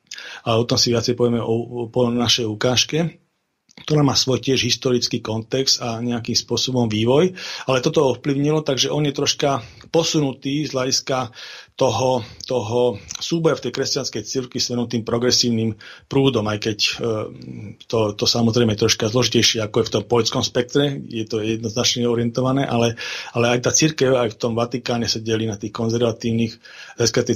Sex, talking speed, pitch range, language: male, 170 wpm, 115-130 Hz, Slovak